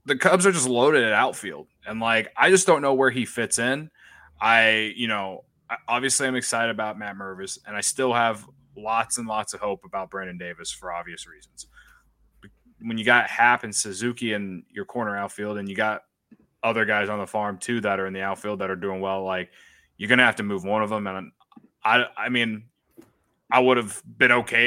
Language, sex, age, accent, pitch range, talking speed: English, male, 20-39, American, 100-120 Hz, 215 wpm